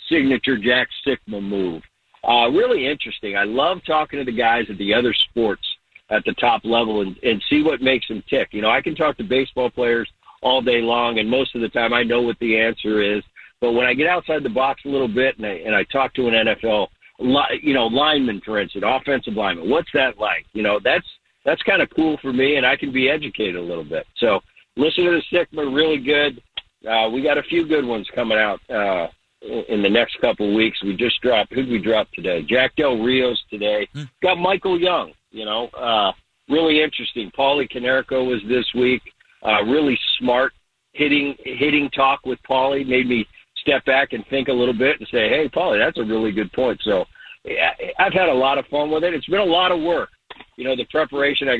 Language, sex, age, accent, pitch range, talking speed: English, male, 50-69, American, 115-145 Hz, 220 wpm